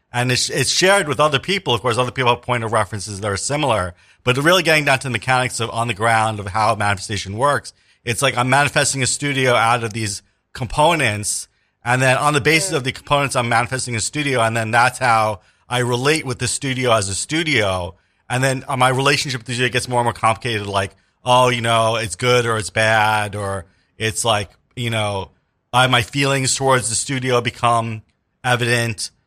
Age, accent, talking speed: 40-59, American, 205 wpm